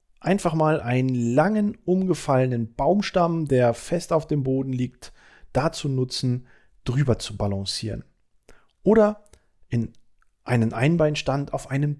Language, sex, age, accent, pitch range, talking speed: German, male, 40-59, German, 120-155 Hz, 115 wpm